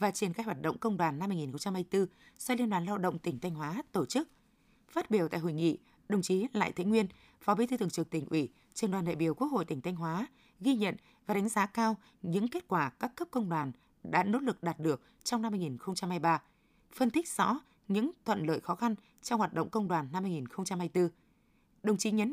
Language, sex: Vietnamese, female